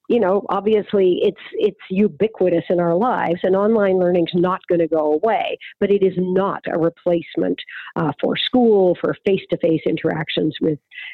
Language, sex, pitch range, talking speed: English, female, 175-230 Hz, 170 wpm